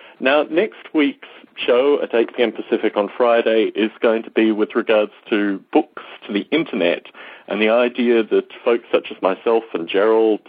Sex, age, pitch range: male, 40-59, 105-145 Hz